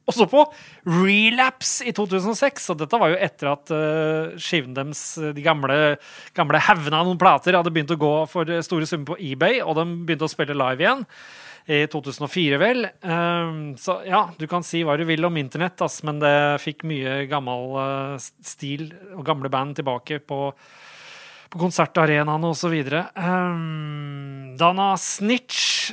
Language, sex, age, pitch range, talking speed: English, male, 30-49, 145-170 Hz, 155 wpm